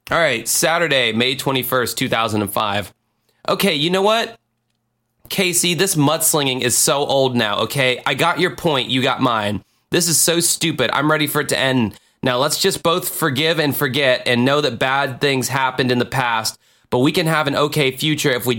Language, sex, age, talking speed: English, male, 20-39, 195 wpm